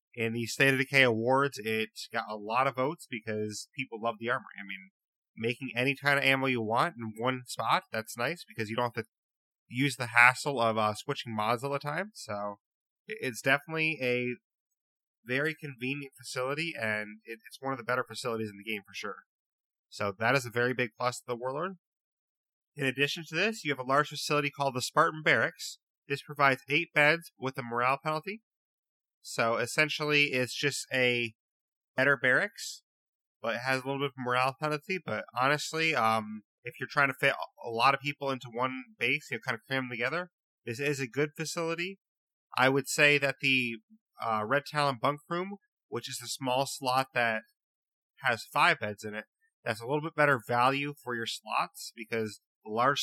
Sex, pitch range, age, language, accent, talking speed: male, 120-150 Hz, 30-49, English, American, 195 wpm